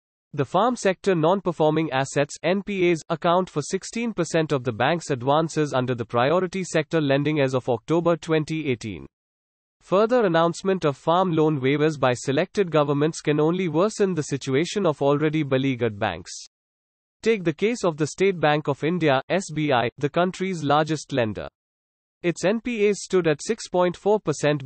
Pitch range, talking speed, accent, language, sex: 135-175 Hz, 145 wpm, Indian, English, male